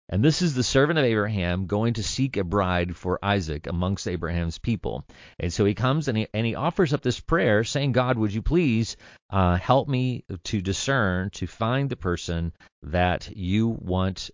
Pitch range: 90-115 Hz